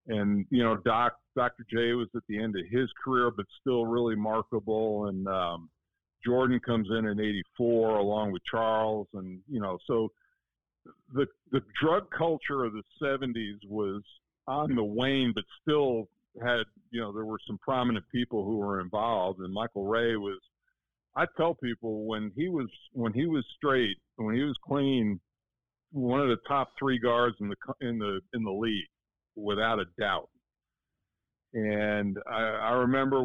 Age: 50-69